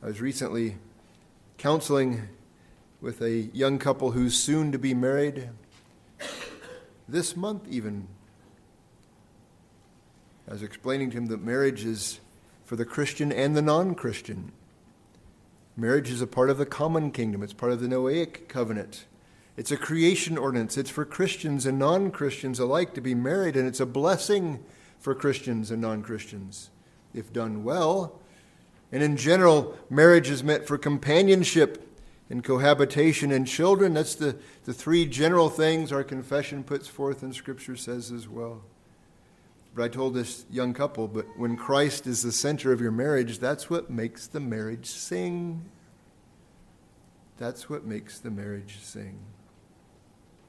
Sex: male